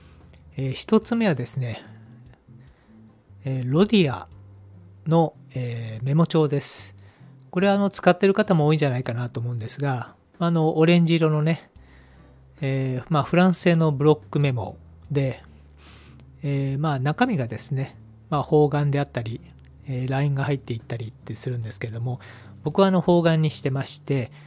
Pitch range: 115-160 Hz